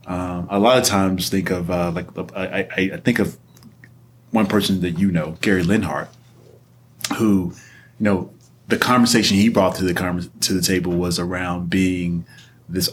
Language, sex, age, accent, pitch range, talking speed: English, male, 30-49, American, 90-105 Hz, 165 wpm